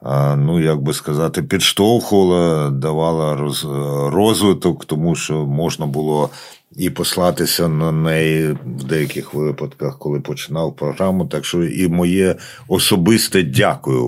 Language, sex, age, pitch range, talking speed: Ukrainian, male, 50-69, 80-100 Hz, 115 wpm